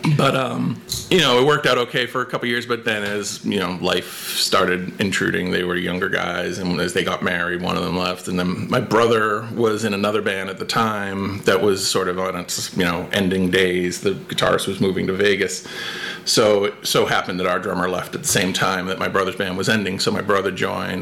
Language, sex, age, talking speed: English, male, 30-49, 235 wpm